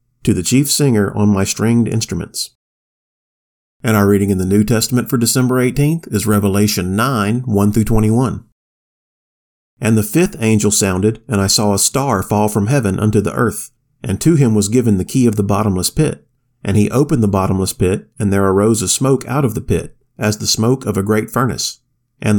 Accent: American